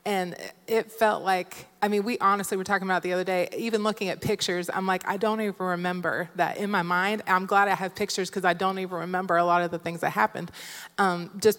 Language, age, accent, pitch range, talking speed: English, 20-39, American, 180-210 Hz, 250 wpm